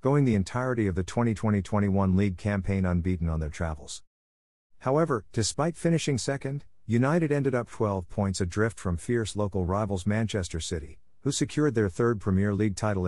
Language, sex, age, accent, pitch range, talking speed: English, male, 50-69, American, 90-110 Hz, 160 wpm